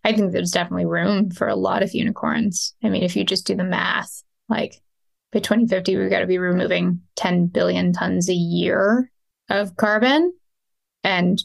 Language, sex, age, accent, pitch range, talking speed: English, female, 20-39, American, 185-230 Hz, 180 wpm